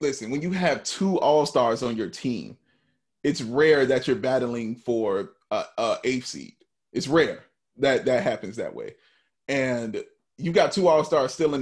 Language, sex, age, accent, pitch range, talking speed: English, male, 30-49, American, 135-185 Hz, 165 wpm